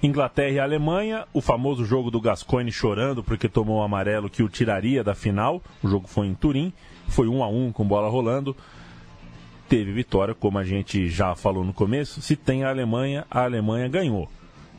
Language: Portuguese